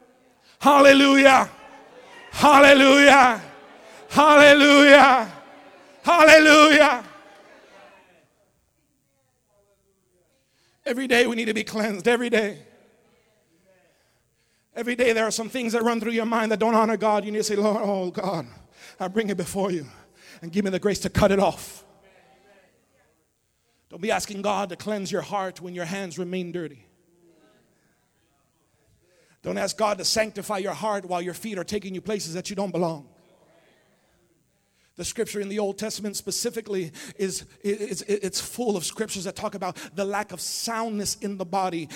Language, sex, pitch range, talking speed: English, male, 190-230 Hz, 145 wpm